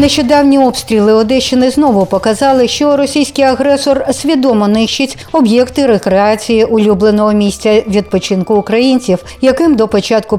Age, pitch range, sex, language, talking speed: 60-79, 200-255 Hz, female, Ukrainian, 110 wpm